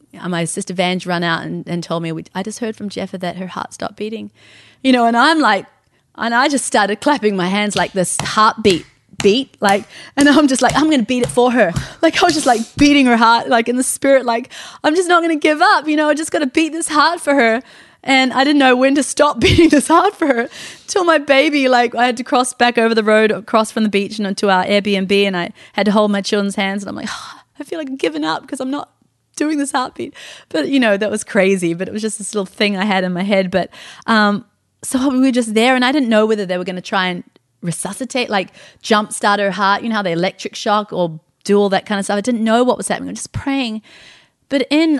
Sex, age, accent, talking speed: female, 20-39, Australian, 270 wpm